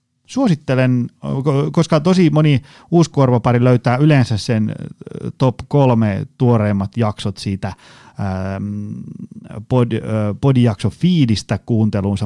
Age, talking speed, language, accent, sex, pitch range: 30-49, 75 wpm, Finnish, native, male, 110-140 Hz